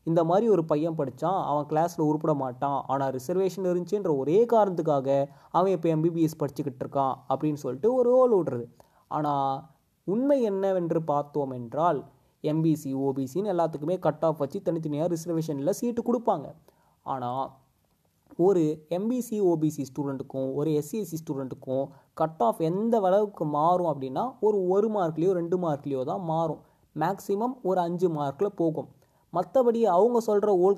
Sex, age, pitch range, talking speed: male, 20-39, 145-190 Hz, 135 wpm